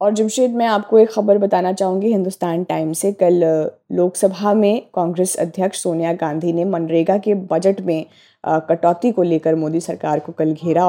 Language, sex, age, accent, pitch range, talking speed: Hindi, female, 20-39, native, 165-195 Hz, 175 wpm